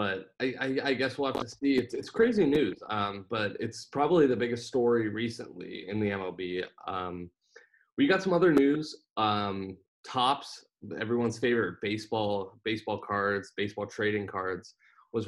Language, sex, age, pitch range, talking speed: English, male, 20-39, 100-125 Hz, 160 wpm